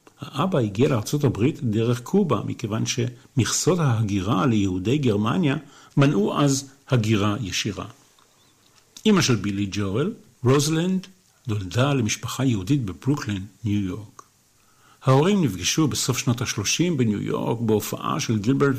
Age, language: 50-69, Hebrew